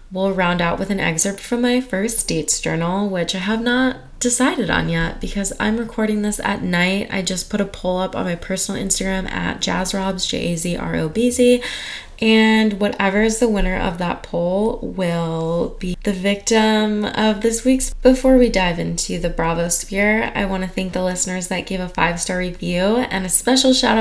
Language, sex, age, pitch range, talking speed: English, female, 20-39, 175-220 Hz, 185 wpm